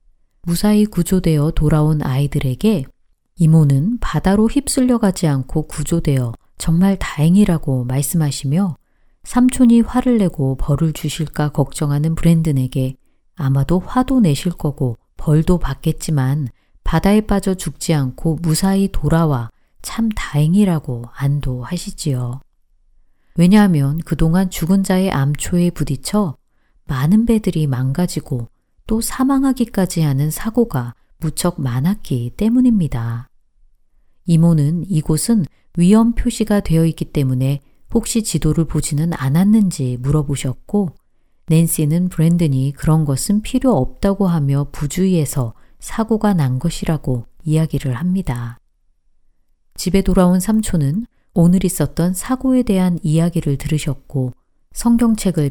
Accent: native